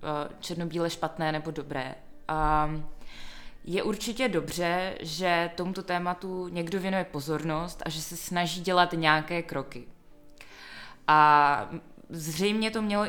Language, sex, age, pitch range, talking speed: Czech, female, 20-39, 155-170 Hz, 110 wpm